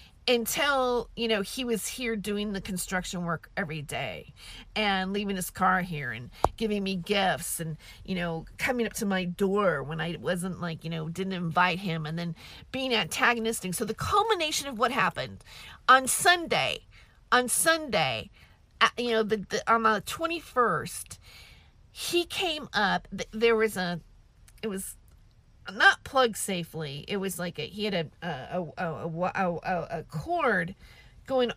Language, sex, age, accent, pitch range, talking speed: English, female, 40-59, American, 180-240 Hz, 160 wpm